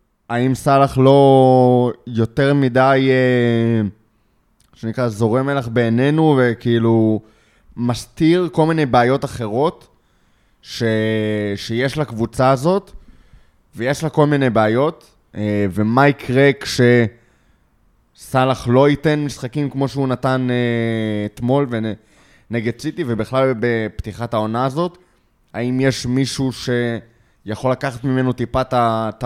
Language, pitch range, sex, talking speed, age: Hebrew, 110-140 Hz, male, 100 wpm, 20-39